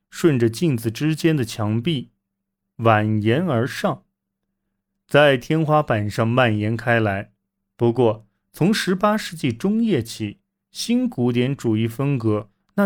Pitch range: 105-155 Hz